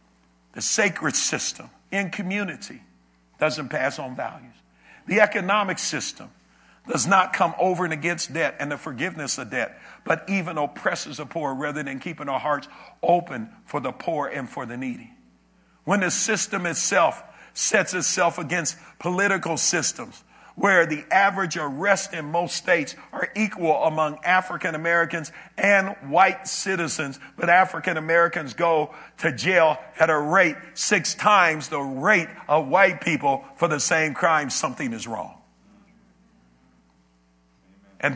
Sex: male